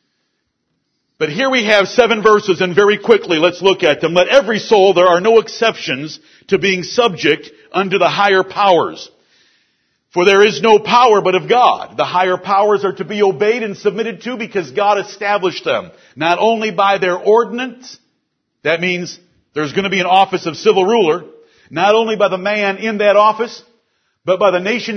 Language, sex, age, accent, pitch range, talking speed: English, male, 50-69, American, 180-230 Hz, 185 wpm